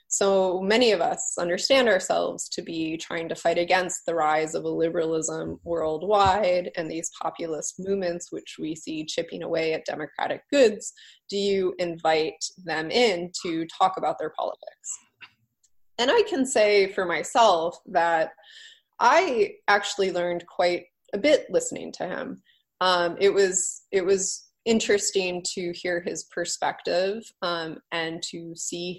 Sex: female